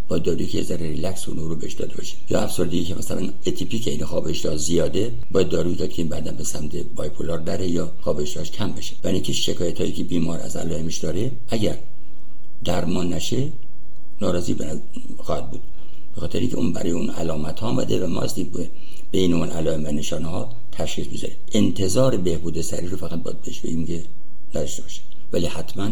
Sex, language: male, Persian